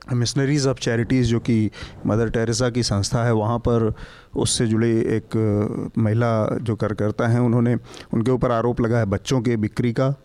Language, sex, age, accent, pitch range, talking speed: English, male, 40-59, Indian, 110-130 Hz, 170 wpm